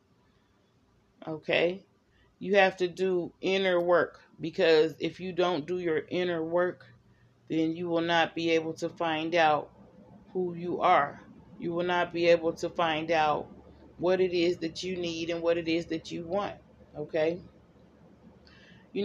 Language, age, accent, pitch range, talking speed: English, 30-49, American, 165-180 Hz, 160 wpm